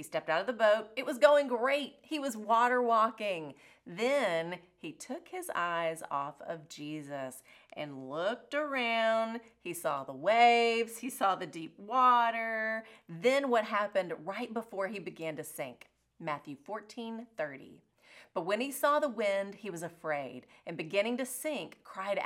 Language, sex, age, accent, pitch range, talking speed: English, female, 30-49, American, 175-265 Hz, 160 wpm